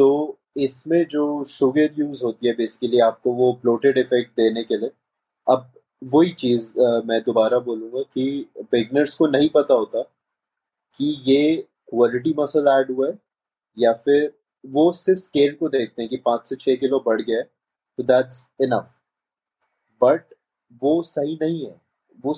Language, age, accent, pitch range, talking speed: Hindi, 20-39, native, 125-155 Hz, 160 wpm